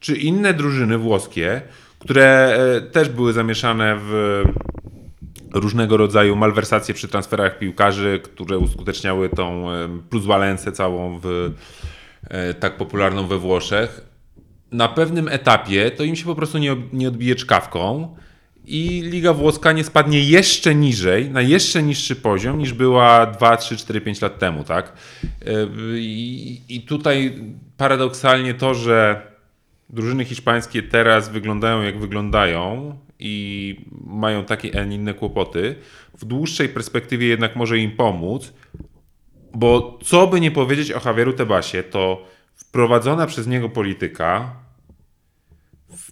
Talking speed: 125 wpm